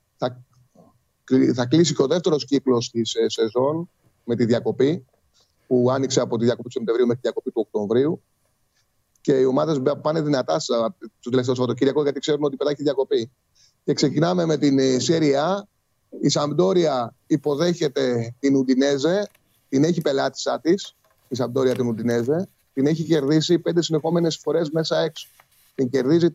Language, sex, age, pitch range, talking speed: Greek, male, 30-49, 130-170 Hz, 145 wpm